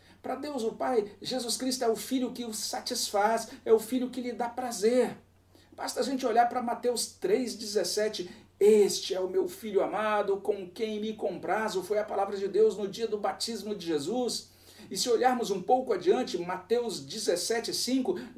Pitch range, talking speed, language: 180-250 Hz, 180 wpm, Portuguese